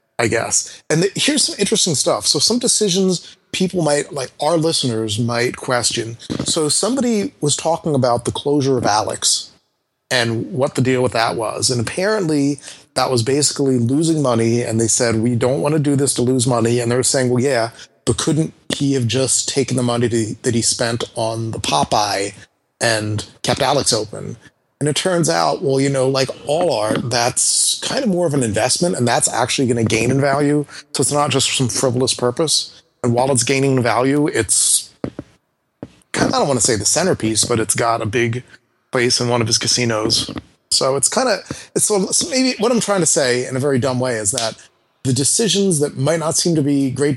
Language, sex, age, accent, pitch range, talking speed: English, male, 30-49, American, 120-150 Hz, 210 wpm